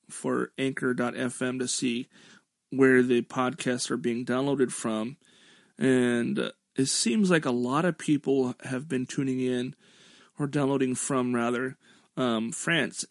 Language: English